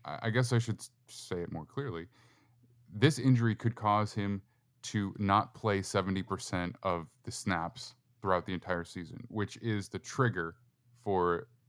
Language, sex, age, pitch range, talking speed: English, male, 20-39, 95-120 Hz, 150 wpm